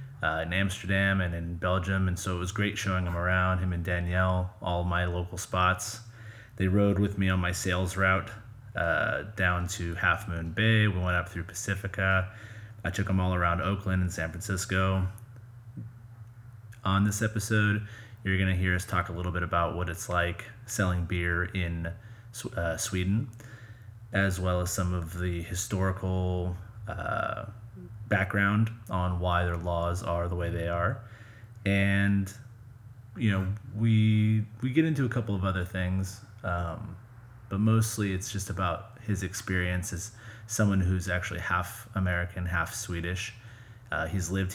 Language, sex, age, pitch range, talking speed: English, male, 30-49, 90-110 Hz, 160 wpm